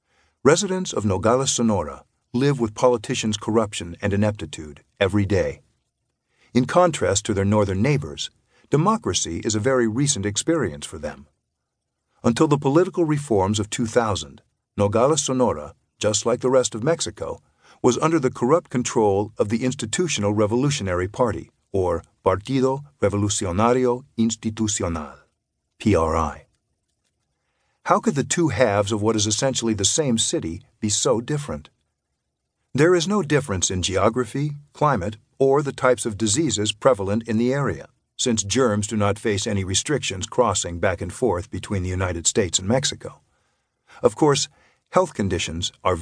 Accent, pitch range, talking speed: American, 105-135 Hz, 140 wpm